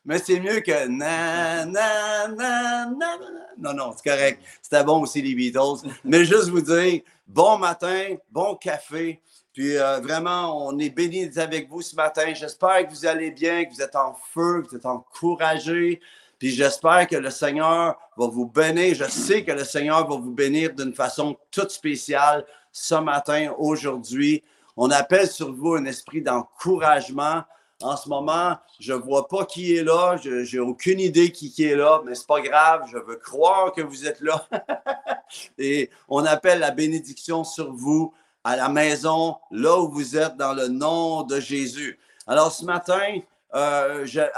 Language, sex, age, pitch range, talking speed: French, male, 50-69, 145-170 Hz, 180 wpm